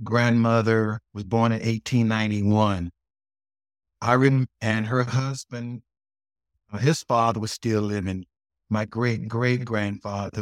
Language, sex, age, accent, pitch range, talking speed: English, male, 60-79, American, 105-125 Hz, 120 wpm